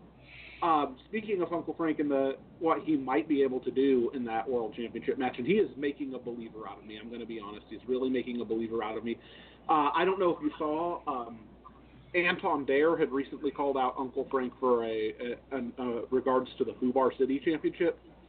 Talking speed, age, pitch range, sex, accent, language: 225 wpm, 30-49, 125-160 Hz, male, American, English